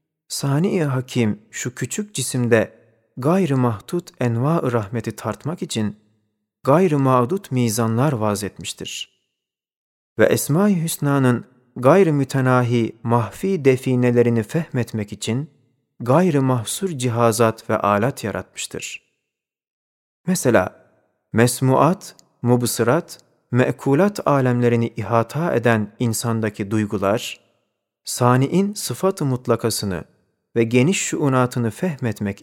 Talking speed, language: 90 wpm, Turkish